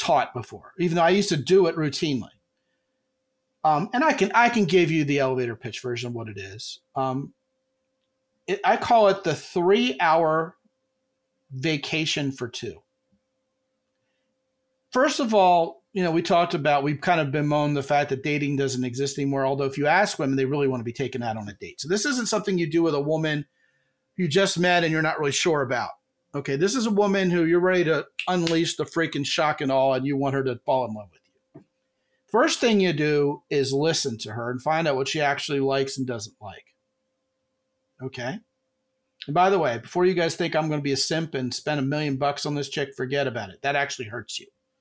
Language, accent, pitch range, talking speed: English, American, 135-195 Hz, 215 wpm